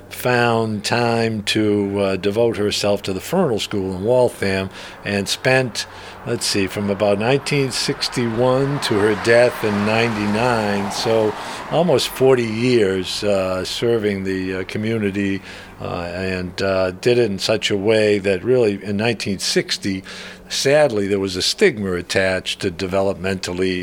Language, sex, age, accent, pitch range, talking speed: English, male, 50-69, American, 95-115 Hz, 135 wpm